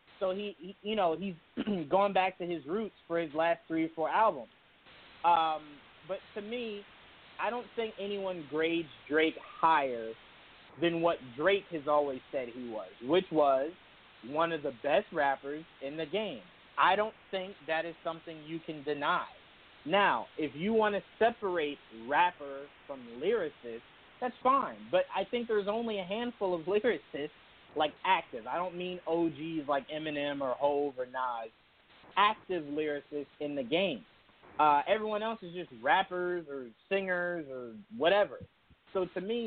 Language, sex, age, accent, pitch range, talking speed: English, male, 30-49, American, 150-195 Hz, 160 wpm